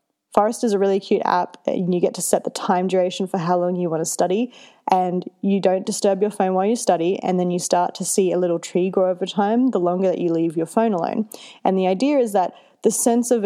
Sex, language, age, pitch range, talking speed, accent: female, English, 20-39, 180-230 Hz, 260 wpm, Australian